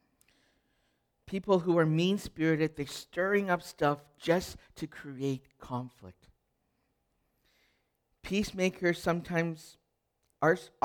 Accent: American